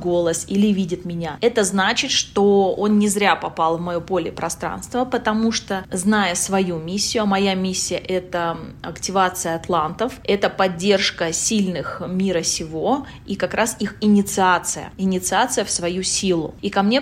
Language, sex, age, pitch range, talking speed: Russian, female, 20-39, 175-205 Hz, 150 wpm